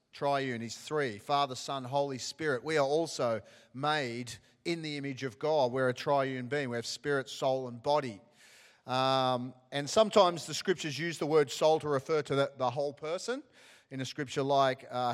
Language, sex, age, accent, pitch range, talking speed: English, male, 40-59, Australian, 130-165 Hz, 185 wpm